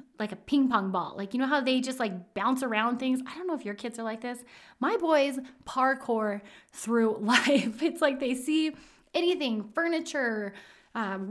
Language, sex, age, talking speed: English, female, 20-39, 190 wpm